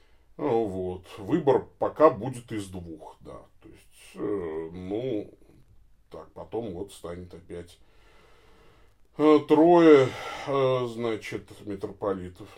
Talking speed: 85 wpm